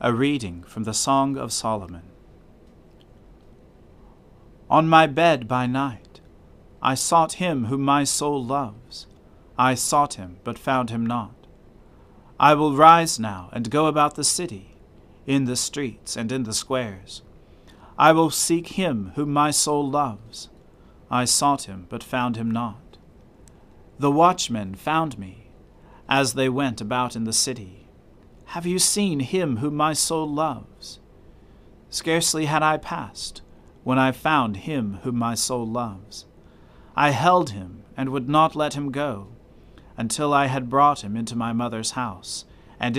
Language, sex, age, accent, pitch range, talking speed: English, male, 40-59, American, 110-145 Hz, 150 wpm